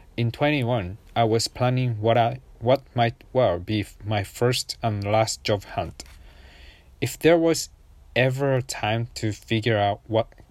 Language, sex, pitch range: Japanese, male, 95-120 Hz